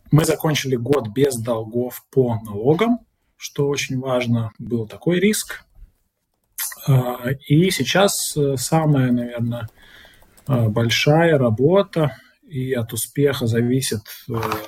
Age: 20-39